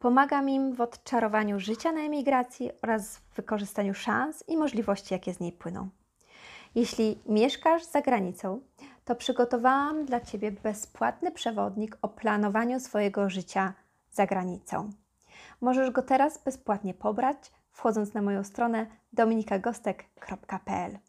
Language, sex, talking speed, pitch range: Polish, female, 120 wpm, 195-250 Hz